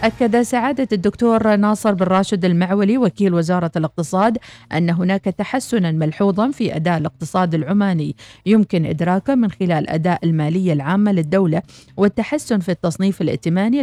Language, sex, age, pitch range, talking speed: Arabic, female, 40-59, 165-215 Hz, 130 wpm